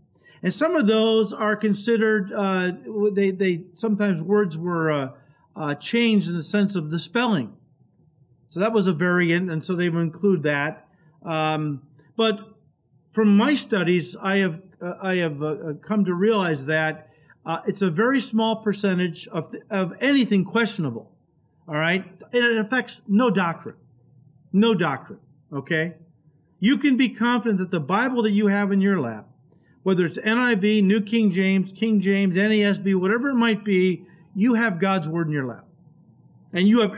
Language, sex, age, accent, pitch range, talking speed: English, male, 50-69, American, 155-210 Hz, 170 wpm